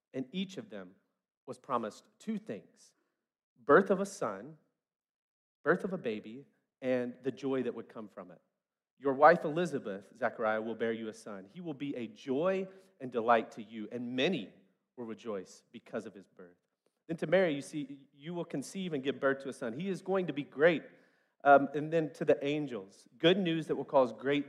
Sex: male